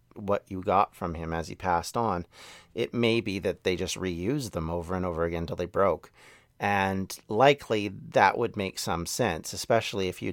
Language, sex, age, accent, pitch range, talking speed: English, male, 40-59, American, 95-120 Hz, 200 wpm